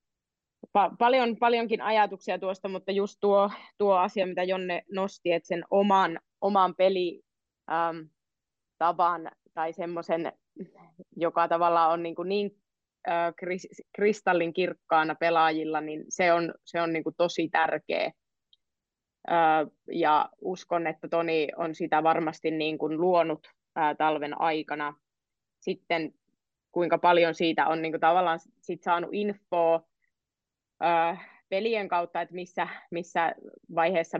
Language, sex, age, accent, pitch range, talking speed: Finnish, female, 20-39, native, 160-185 Hz, 115 wpm